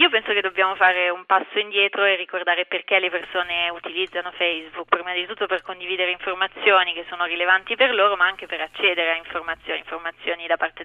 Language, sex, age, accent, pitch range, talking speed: Italian, female, 20-39, native, 175-210 Hz, 195 wpm